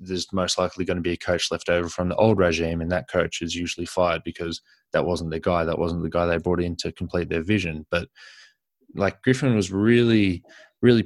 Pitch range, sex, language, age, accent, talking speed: 90-100 Hz, male, English, 20-39, Australian, 230 wpm